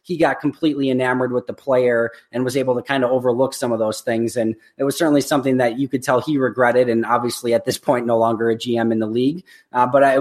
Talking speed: 260 wpm